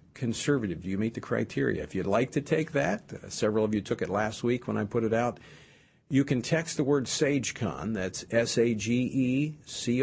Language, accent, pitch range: English, American, 110-140 Hz